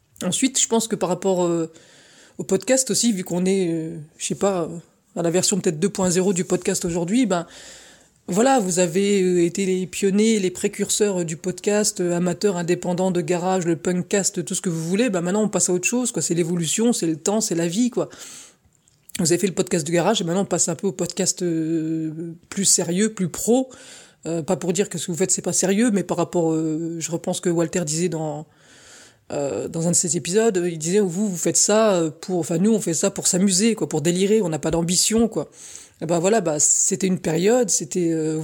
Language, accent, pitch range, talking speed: French, French, 170-200 Hz, 225 wpm